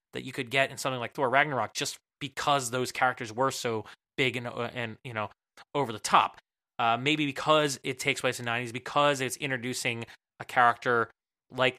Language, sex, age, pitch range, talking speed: English, male, 20-39, 120-140 Hz, 200 wpm